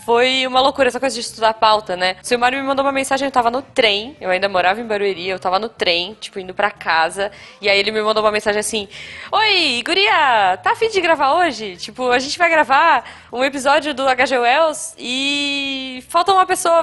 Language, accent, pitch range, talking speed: Portuguese, Brazilian, 210-285 Hz, 220 wpm